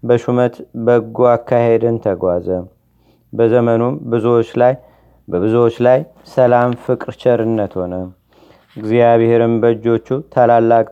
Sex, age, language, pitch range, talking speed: male, 40-59, Amharic, 110-125 Hz, 90 wpm